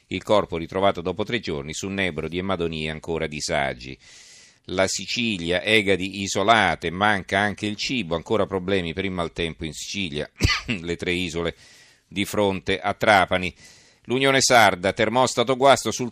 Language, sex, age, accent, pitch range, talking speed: Italian, male, 40-59, native, 90-105 Hz, 145 wpm